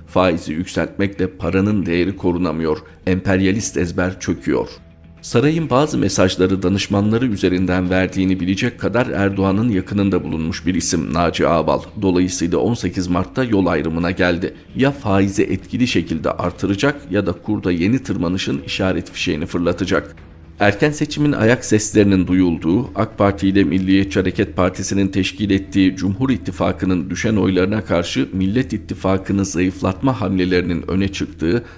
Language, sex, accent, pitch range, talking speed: Turkish, male, native, 90-100 Hz, 125 wpm